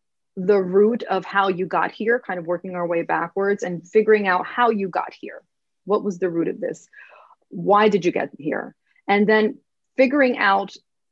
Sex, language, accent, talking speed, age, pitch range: female, English, American, 190 wpm, 30-49, 175-210 Hz